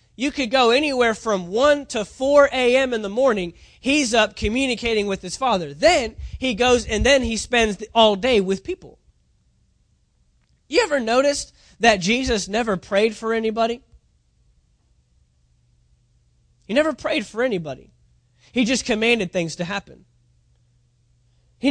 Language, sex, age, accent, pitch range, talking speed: English, male, 20-39, American, 160-235 Hz, 140 wpm